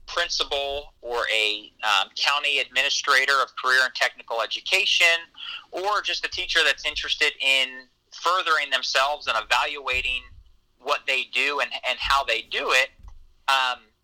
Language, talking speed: English, 135 wpm